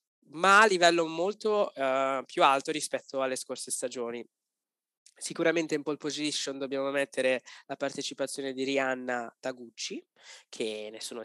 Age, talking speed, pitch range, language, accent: 20-39, 130 wpm, 125-155 Hz, Italian, native